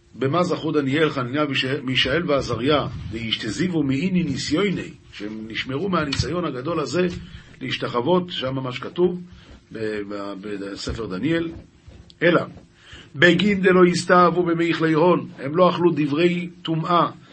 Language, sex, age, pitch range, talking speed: Hebrew, male, 50-69, 135-185 Hz, 110 wpm